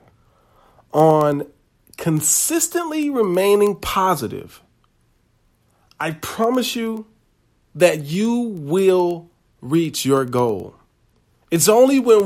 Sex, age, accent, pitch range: male, 40-59, American, 120-180 Hz